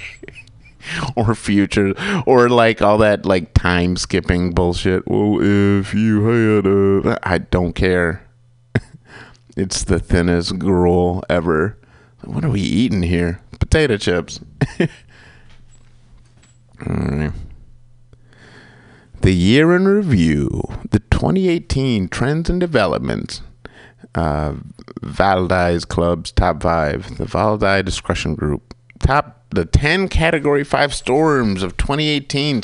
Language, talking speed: English, 110 wpm